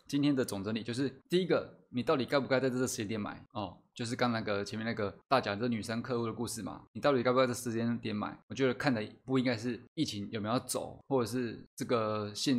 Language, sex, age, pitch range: Chinese, male, 20-39, 115-140 Hz